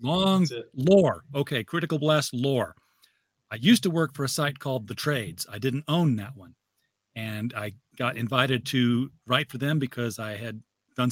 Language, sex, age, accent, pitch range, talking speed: English, male, 40-59, American, 120-160 Hz, 180 wpm